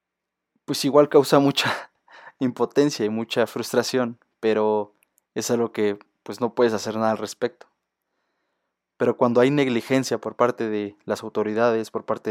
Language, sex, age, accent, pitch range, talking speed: Spanish, male, 20-39, Mexican, 110-125 Hz, 145 wpm